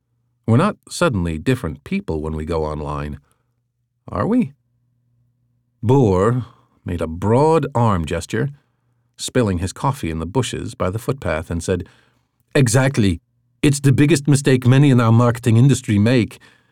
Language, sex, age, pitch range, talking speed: English, male, 50-69, 100-125 Hz, 140 wpm